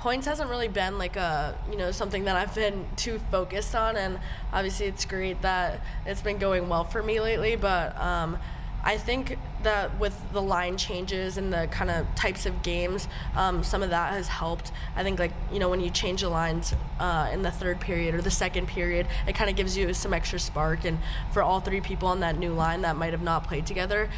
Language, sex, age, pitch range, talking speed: English, female, 10-29, 165-195 Hz, 225 wpm